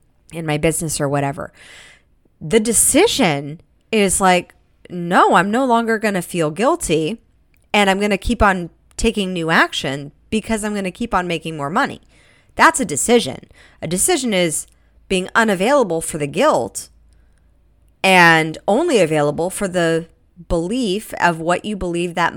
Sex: female